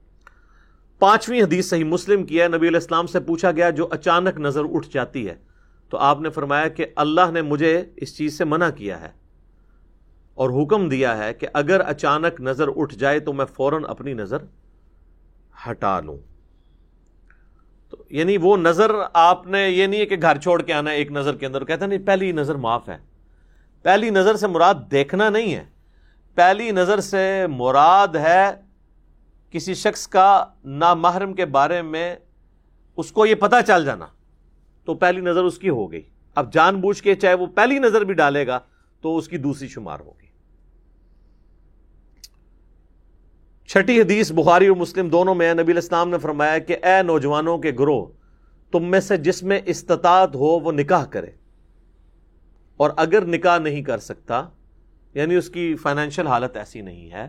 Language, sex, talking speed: Urdu, male, 170 wpm